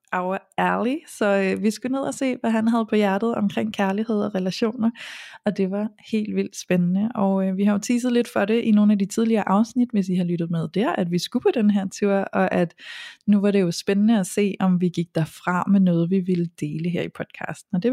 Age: 20-39